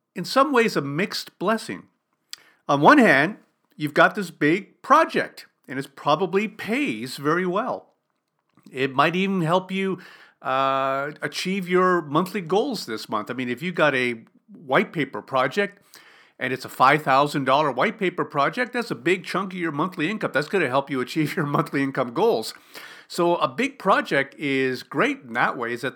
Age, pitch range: 50-69, 135-190 Hz